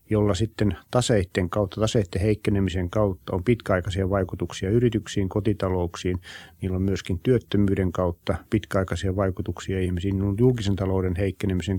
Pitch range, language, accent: 95-110 Hz, Finnish, native